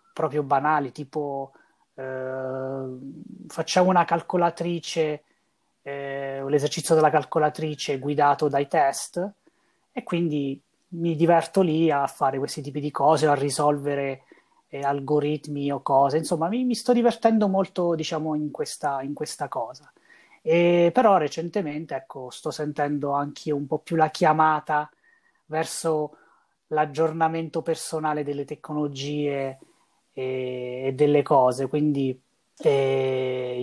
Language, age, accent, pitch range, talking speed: Italian, 20-39, native, 140-165 Hz, 120 wpm